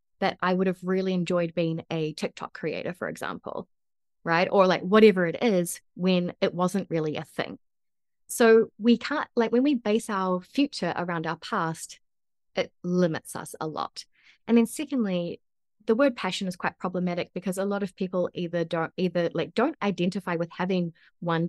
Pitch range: 165-195 Hz